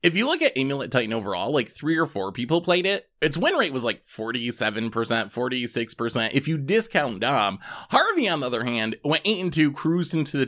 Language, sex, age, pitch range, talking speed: English, male, 20-39, 115-175 Hz, 210 wpm